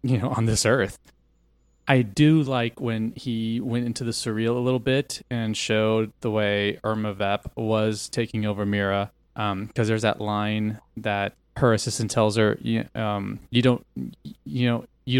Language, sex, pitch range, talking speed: English, male, 105-120 Hz, 175 wpm